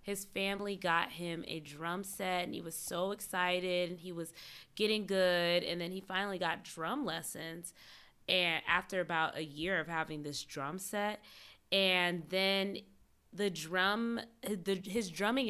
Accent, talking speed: American, 160 wpm